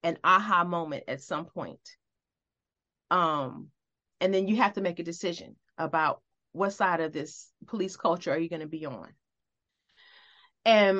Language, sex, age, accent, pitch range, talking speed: English, female, 30-49, American, 180-255 Hz, 160 wpm